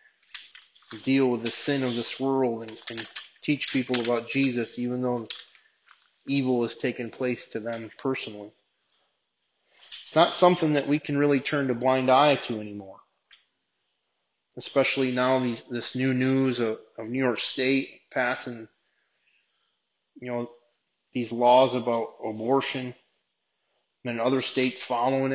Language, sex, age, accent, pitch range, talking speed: English, male, 30-49, American, 120-135 Hz, 135 wpm